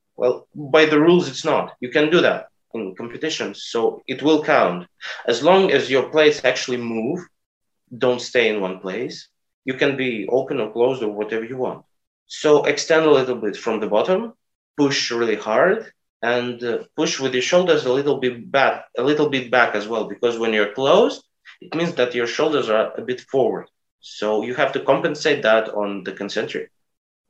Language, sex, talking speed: English, male, 190 wpm